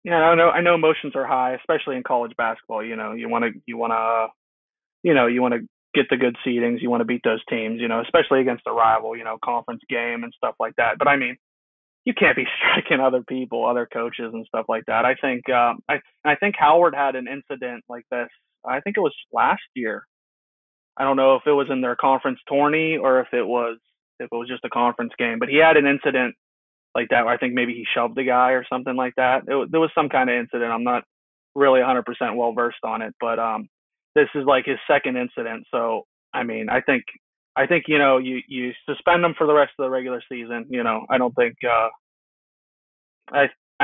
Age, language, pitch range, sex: 20-39, English, 120-140 Hz, male